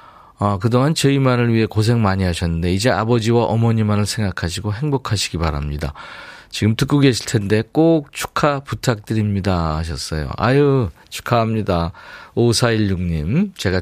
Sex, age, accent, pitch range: male, 40-59, native, 95-130 Hz